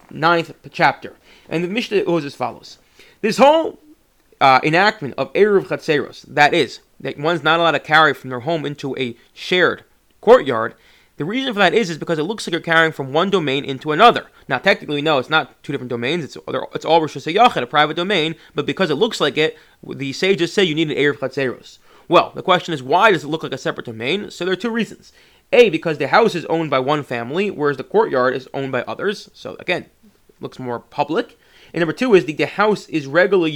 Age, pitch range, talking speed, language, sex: 30-49, 140-185 Hz, 220 wpm, English, male